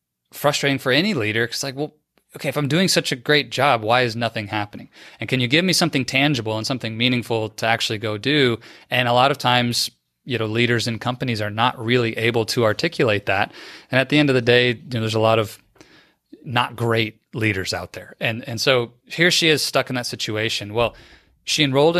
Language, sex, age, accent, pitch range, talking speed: English, male, 30-49, American, 110-130 Hz, 220 wpm